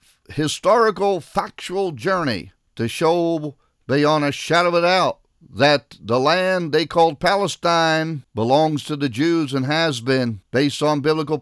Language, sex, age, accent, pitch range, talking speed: English, male, 50-69, American, 125-160 Hz, 140 wpm